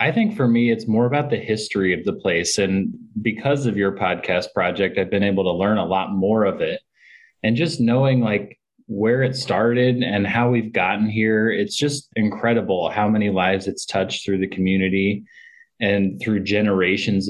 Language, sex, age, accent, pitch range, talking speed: English, male, 20-39, American, 100-125 Hz, 185 wpm